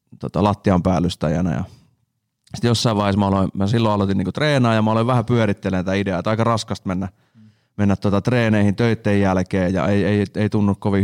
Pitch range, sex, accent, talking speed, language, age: 95-110 Hz, male, native, 185 wpm, Finnish, 30-49